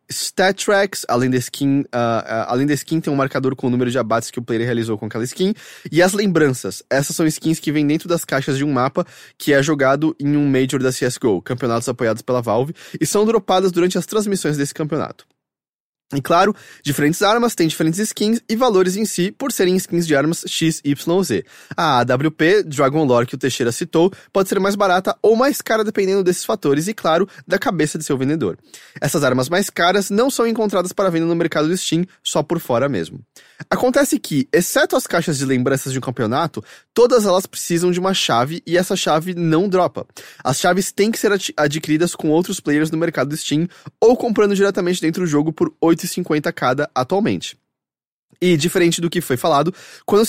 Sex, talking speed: male, 205 wpm